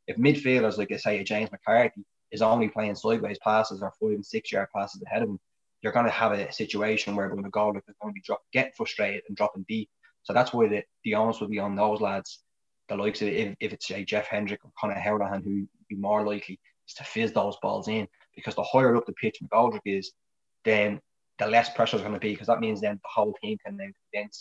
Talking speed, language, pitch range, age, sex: 245 wpm, English, 100-110 Hz, 20-39, male